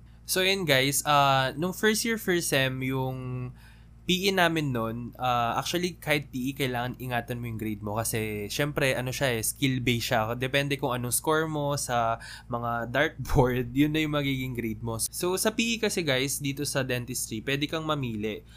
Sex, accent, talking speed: male, native, 180 wpm